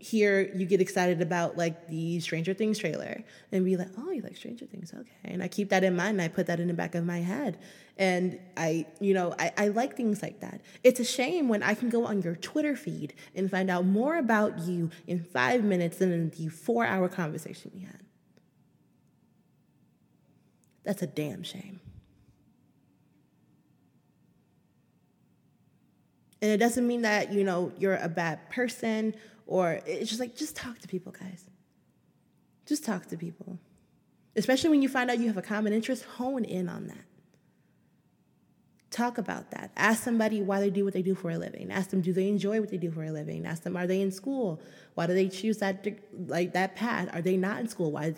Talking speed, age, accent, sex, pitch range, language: 200 wpm, 20-39, American, female, 175-220 Hz, English